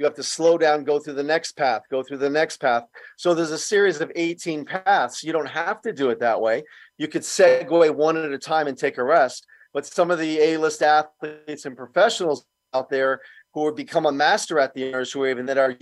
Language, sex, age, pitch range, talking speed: English, male, 40-59, 140-170 Hz, 240 wpm